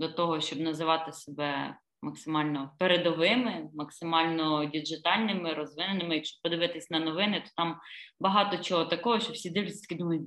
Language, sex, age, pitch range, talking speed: Ukrainian, female, 20-39, 165-215 Hz, 140 wpm